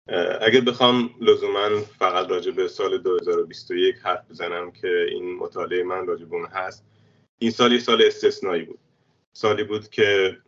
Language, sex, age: Persian, male, 30-49